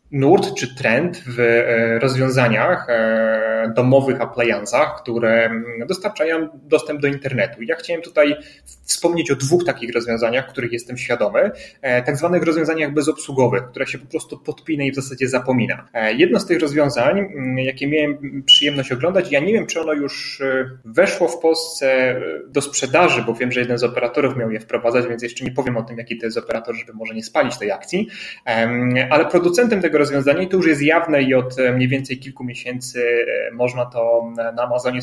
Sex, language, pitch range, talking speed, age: male, Polish, 120-155 Hz, 170 wpm, 30-49